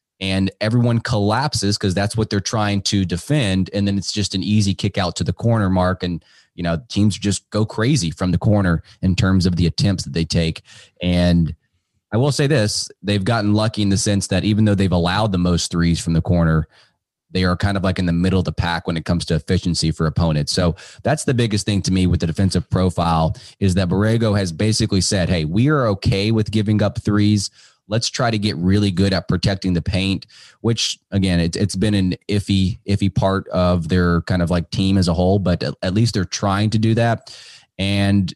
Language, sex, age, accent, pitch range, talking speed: English, male, 20-39, American, 90-105 Hz, 220 wpm